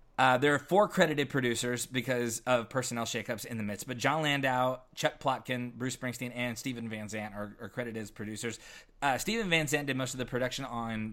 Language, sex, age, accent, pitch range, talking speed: English, male, 20-39, American, 115-130 Hz, 210 wpm